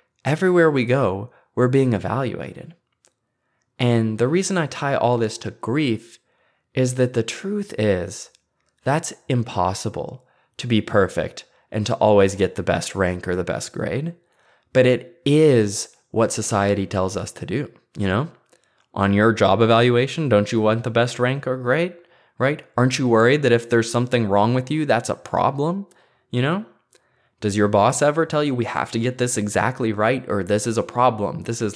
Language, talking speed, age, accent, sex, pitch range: English, 180 wpm, 20-39, American, male, 105-140 Hz